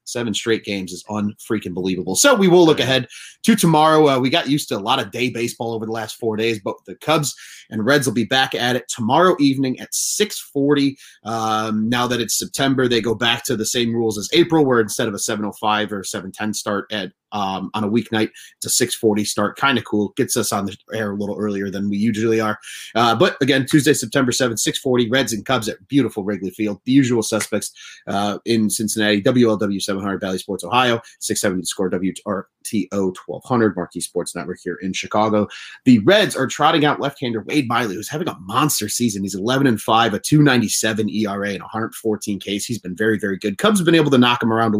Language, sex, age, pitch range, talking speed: English, male, 30-49, 105-130 Hz, 215 wpm